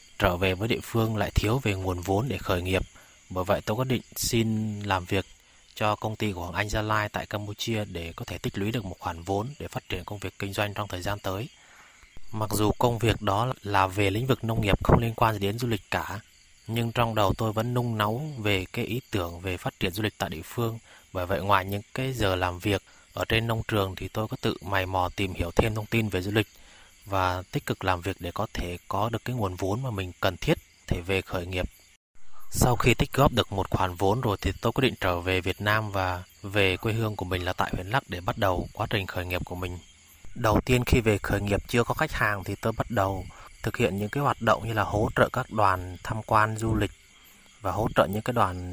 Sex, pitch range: male, 95-115 Hz